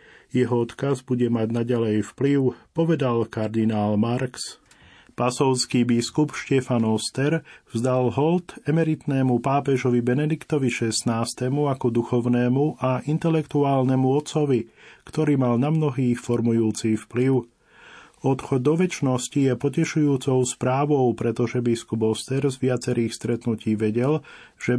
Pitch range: 115-135 Hz